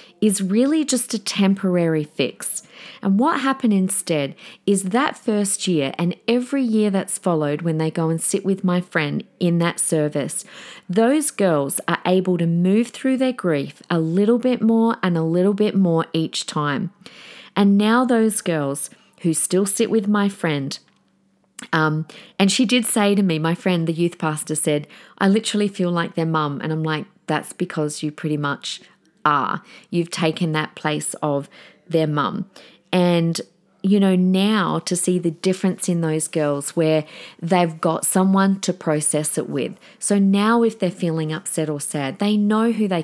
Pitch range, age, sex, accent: 160-205 Hz, 40-59, female, Australian